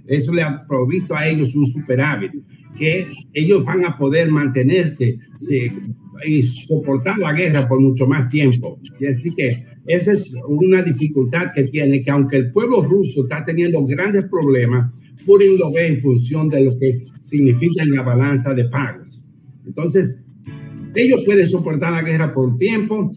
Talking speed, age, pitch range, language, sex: 160 wpm, 60-79, 130-170 Hz, Spanish, male